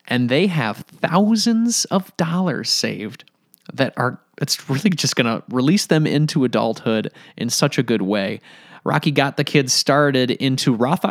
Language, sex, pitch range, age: English, male, 120-170 Hz, 20-39